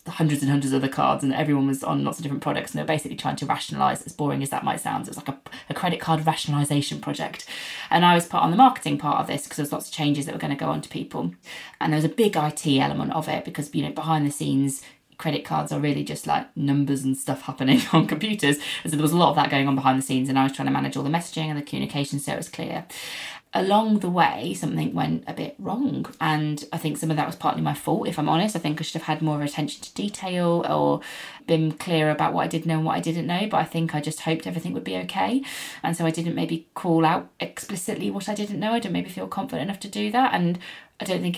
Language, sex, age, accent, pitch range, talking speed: English, female, 20-39, British, 145-175 Hz, 280 wpm